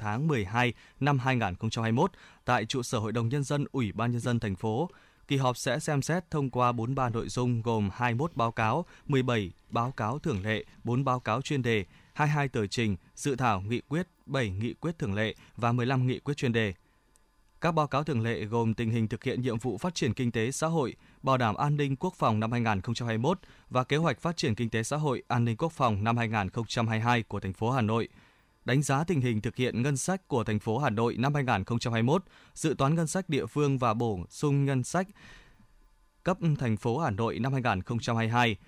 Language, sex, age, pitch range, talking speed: Vietnamese, male, 20-39, 115-145 Hz, 215 wpm